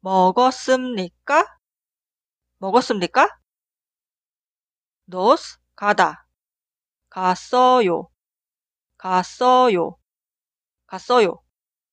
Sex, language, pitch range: female, Korean, 190-255 Hz